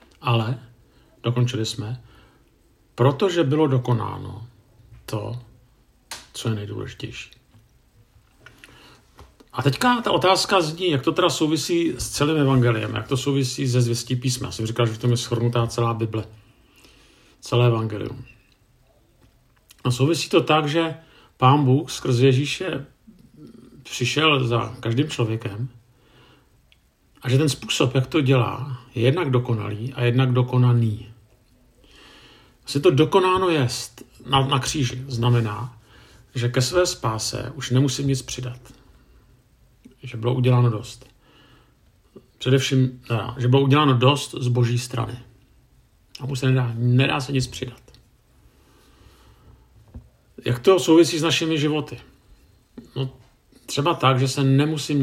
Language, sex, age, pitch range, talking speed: Czech, male, 50-69, 120-135 Hz, 120 wpm